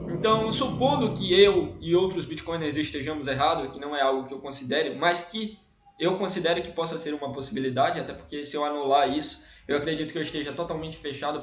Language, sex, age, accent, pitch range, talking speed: Portuguese, male, 20-39, Brazilian, 155-220 Hz, 200 wpm